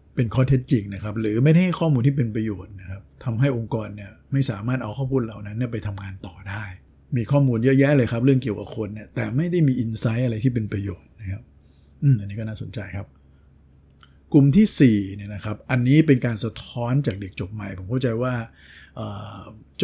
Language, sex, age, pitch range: Thai, male, 60-79, 100-130 Hz